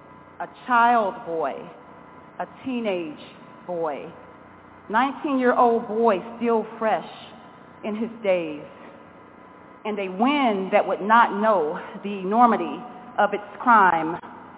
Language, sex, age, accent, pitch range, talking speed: English, female, 30-49, American, 190-240 Hz, 105 wpm